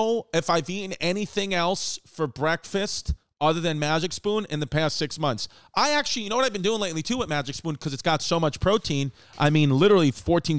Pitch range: 145-185 Hz